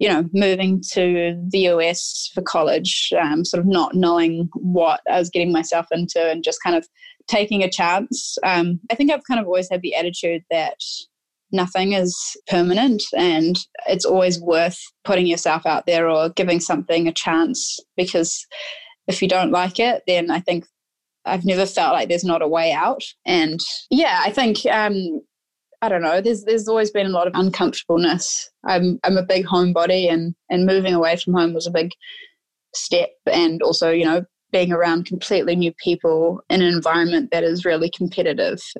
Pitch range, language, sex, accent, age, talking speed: 170-200 Hz, English, female, Australian, 20-39, 185 wpm